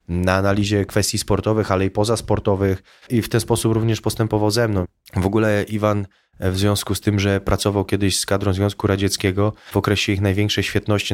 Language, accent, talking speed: Polish, native, 185 wpm